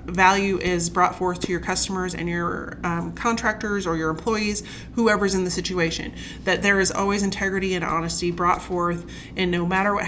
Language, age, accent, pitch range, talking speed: English, 30-49, American, 170-200 Hz, 185 wpm